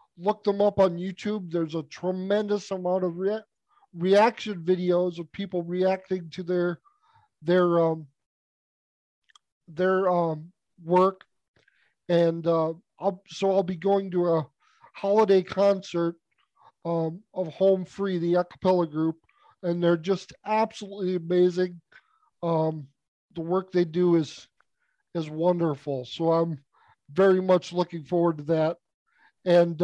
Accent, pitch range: American, 170-200 Hz